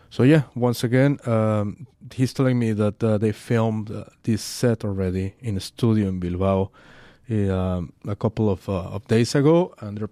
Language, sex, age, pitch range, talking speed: English, male, 30-49, 100-125 Hz, 185 wpm